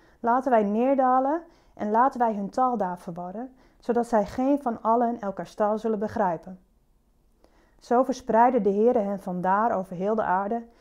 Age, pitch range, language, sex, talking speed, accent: 30-49, 200-250 Hz, Dutch, female, 160 wpm, Dutch